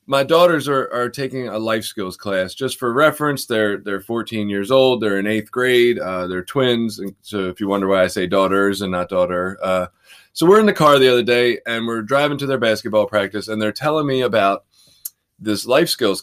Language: English